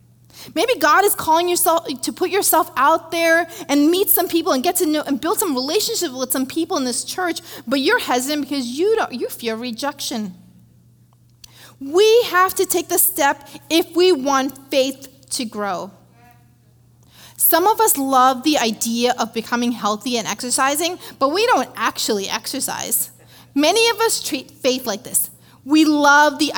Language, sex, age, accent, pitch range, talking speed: English, female, 30-49, American, 235-345 Hz, 170 wpm